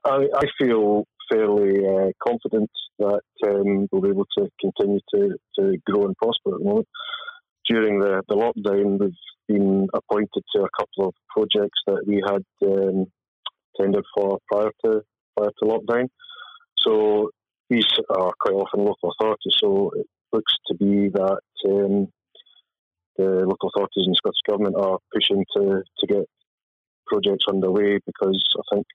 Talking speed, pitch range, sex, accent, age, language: 155 wpm, 100-115 Hz, male, British, 30-49, English